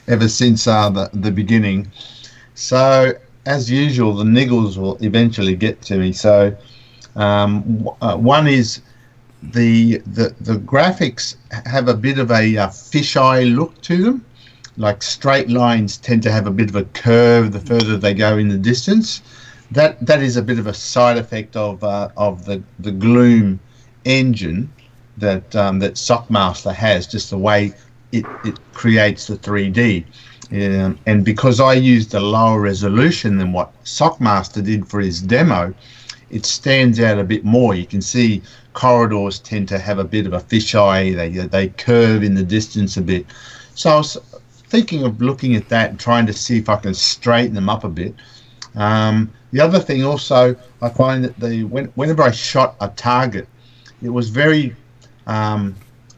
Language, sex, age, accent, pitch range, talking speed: English, male, 50-69, Australian, 105-125 Hz, 175 wpm